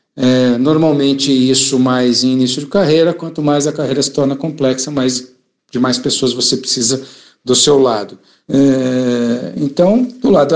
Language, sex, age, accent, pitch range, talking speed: Portuguese, male, 60-79, Brazilian, 135-175 Hz, 150 wpm